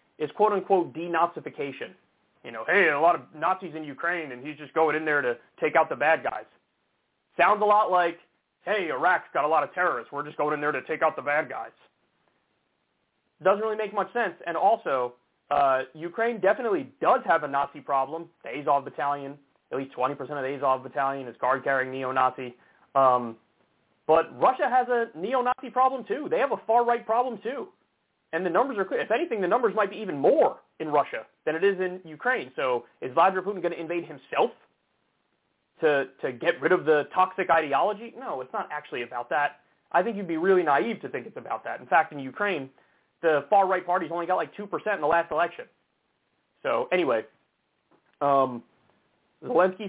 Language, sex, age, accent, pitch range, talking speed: English, male, 30-49, American, 140-205 Hz, 190 wpm